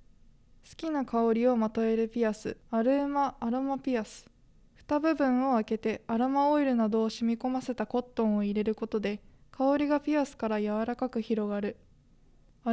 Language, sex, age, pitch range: Japanese, female, 20-39, 225-270 Hz